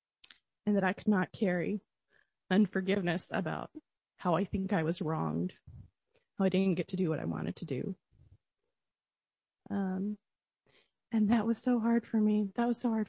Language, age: English, 20-39